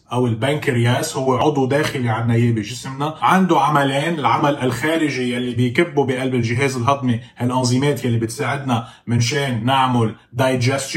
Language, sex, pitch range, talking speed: Arabic, male, 120-155 Hz, 125 wpm